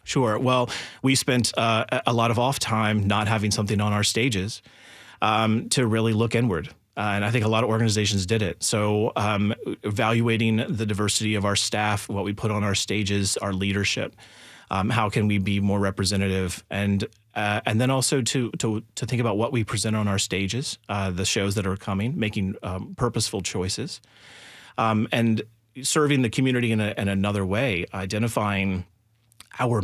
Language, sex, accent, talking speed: English, male, American, 185 wpm